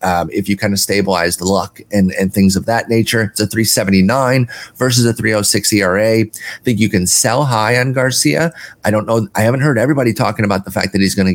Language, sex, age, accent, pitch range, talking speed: English, male, 30-49, American, 100-125 Hz, 235 wpm